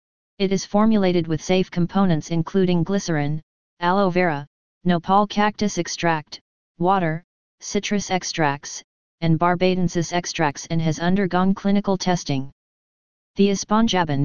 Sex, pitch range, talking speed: female, 165-195 Hz, 110 wpm